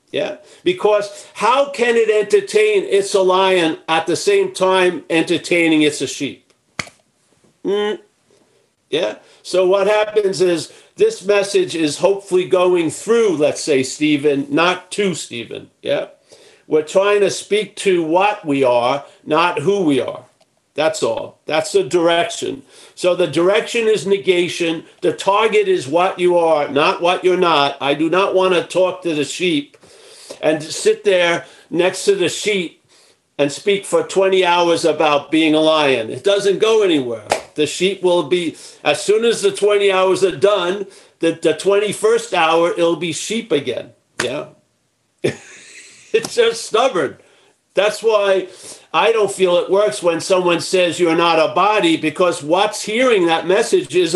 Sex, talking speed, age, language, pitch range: male, 155 wpm, 50-69, English, 170-215 Hz